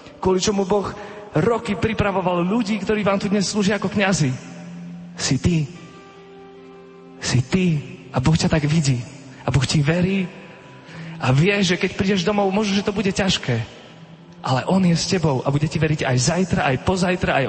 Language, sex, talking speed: Slovak, male, 175 wpm